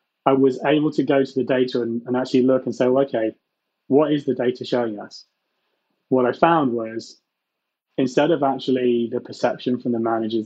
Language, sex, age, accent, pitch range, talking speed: English, male, 20-39, British, 120-135 Hz, 190 wpm